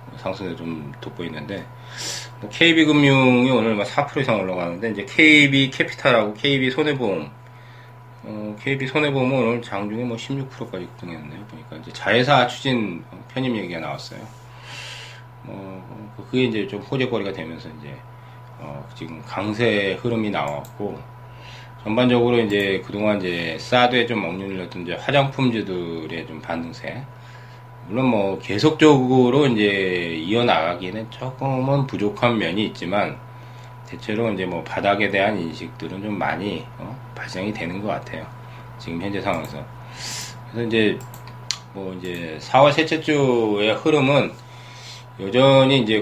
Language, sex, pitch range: Korean, male, 105-125 Hz